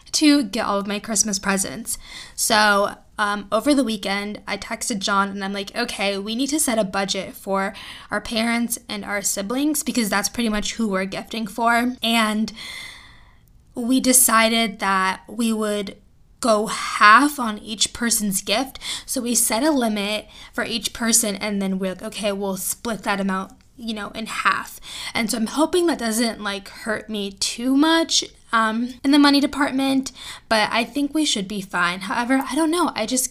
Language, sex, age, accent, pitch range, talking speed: English, female, 10-29, American, 205-250 Hz, 180 wpm